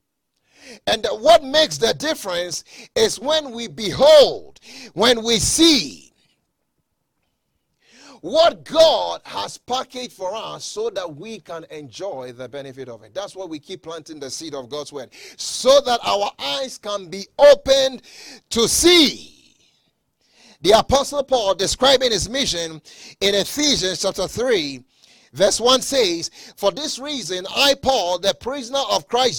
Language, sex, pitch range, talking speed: English, male, 195-280 Hz, 140 wpm